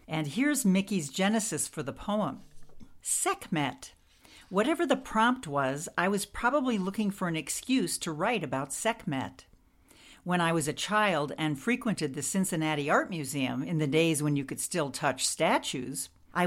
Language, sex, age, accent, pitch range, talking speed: English, female, 60-79, American, 145-195 Hz, 160 wpm